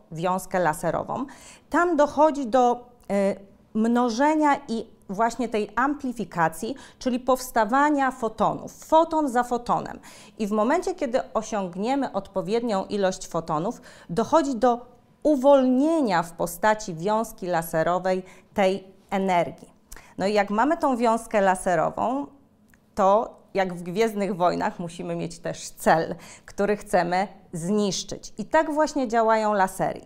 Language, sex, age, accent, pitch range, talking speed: Polish, female, 40-59, native, 180-235 Hz, 115 wpm